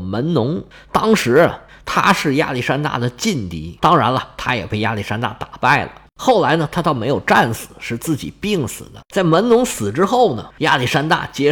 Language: Chinese